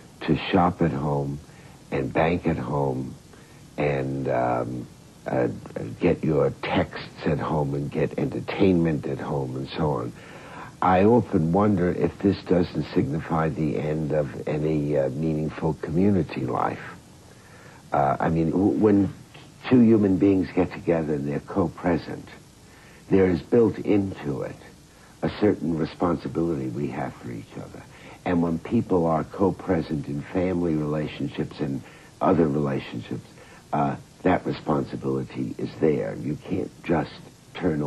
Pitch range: 70-90 Hz